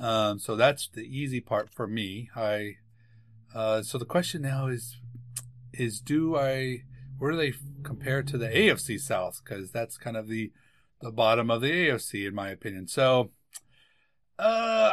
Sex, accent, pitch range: male, American, 110-145 Hz